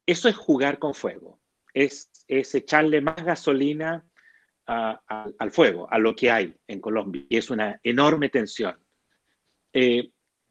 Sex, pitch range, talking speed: male, 125-155 Hz, 150 wpm